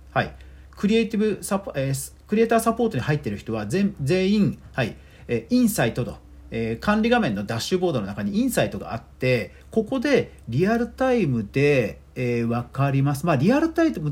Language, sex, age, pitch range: Japanese, male, 40-59, 120-200 Hz